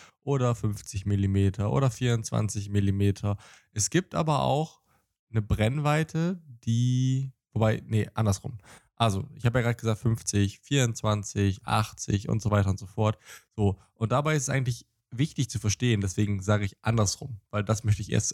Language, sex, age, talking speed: German, male, 20-39, 160 wpm